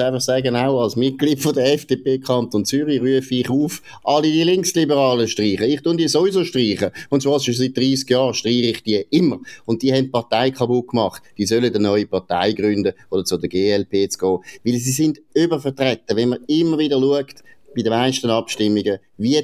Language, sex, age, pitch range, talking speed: German, male, 30-49, 95-130 Hz, 200 wpm